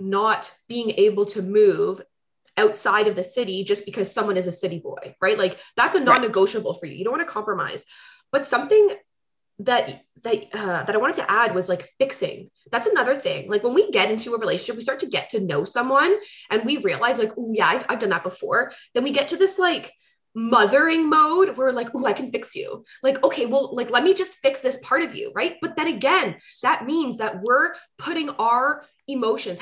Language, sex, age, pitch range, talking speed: English, female, 20-39, 225-335 Hz, 215 wpm